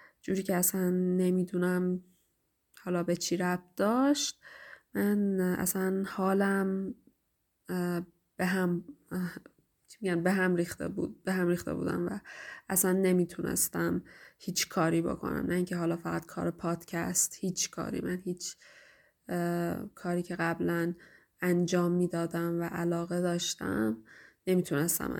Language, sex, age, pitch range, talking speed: Persian, female, 20-39, 170-190 Hz, 110 wpm